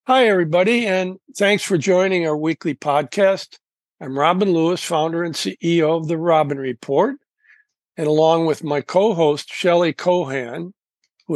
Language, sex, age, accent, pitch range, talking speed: English, male, 60-79, American, 145-180 Hz, 145 wpm